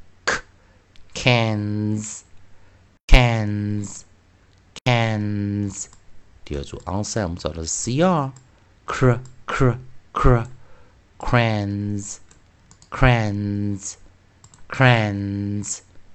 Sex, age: male, 50-69